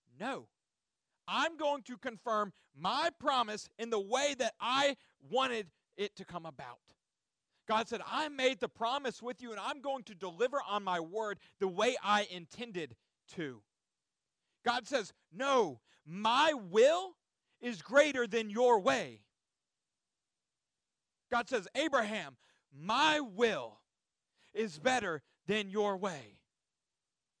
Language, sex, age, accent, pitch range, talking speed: English, male, 40-59, American, 185-255 Hz, 125 wpm